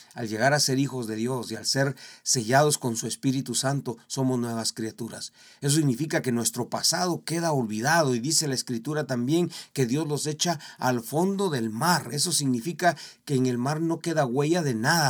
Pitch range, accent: 120-160 Hz, Mexican